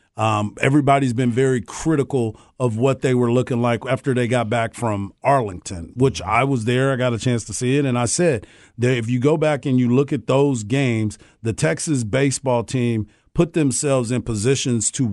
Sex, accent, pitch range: male, American, 115-140 Hz